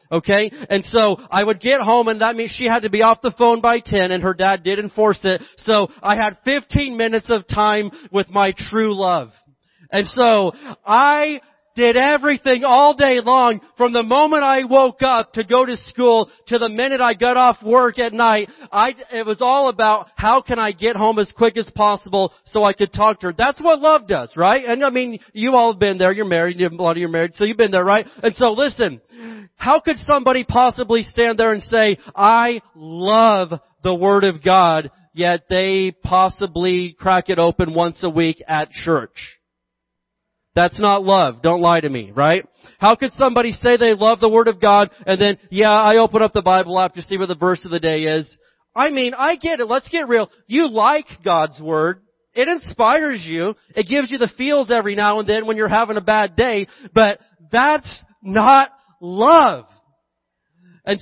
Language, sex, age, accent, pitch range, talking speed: English, male, 40-59, American, 185-240 Hz, 205 wpm